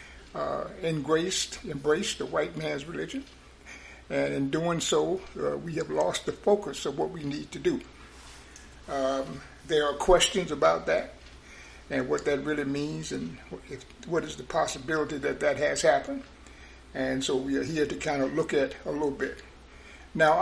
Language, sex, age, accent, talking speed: English, male, 60-79, American, 170 wpm